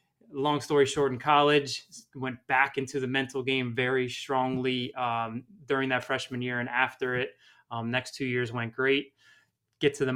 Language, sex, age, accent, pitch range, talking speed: English, male, 20-39, American, 120-145 Hz, 175 wpm